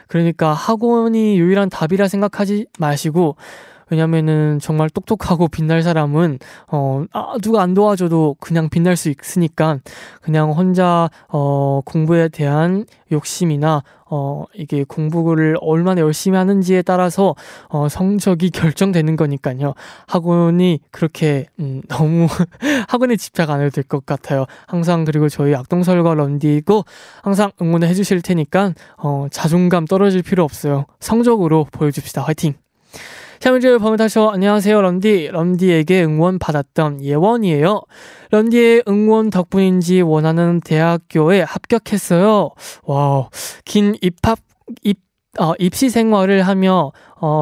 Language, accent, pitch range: Korean, native, 155-200 Hz